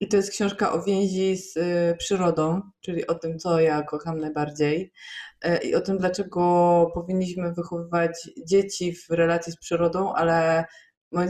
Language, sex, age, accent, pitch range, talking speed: Polish, female, 20-39, native, 160-180 Hz, 150 wpm